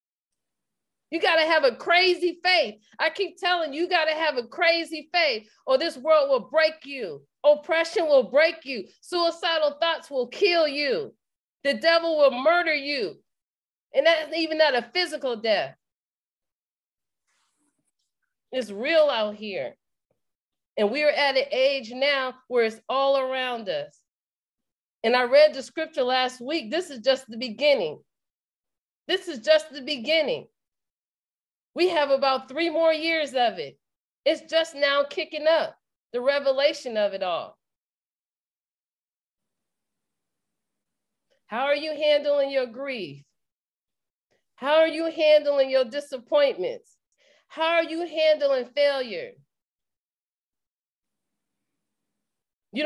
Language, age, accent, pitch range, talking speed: English, 40-59, American, 265-325 Hz, 130 wpm